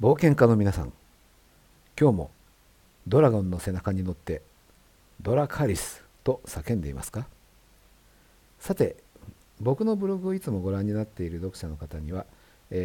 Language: Japanese